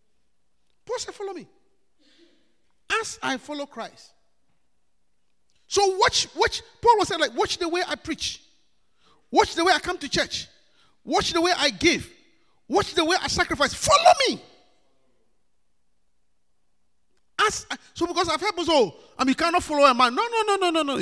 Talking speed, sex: 170 wpm, male